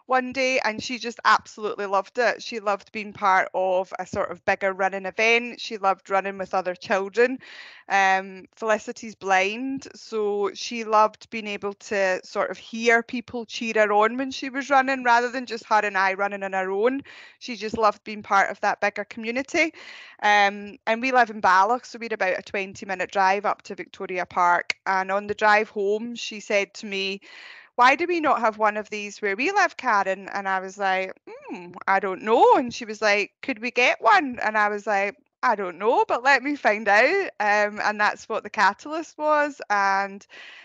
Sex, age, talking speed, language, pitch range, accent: female, 20-39, 205 wpm, English, 195-235 Hz, British